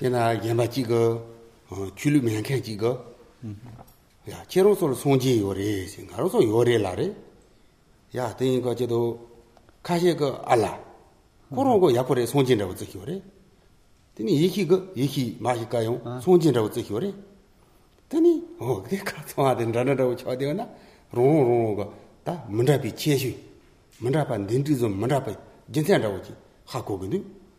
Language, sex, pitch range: English, male, 110-165 Hz